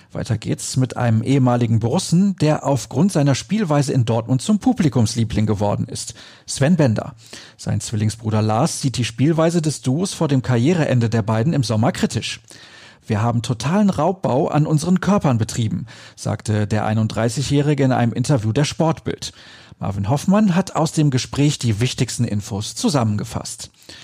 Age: 40-59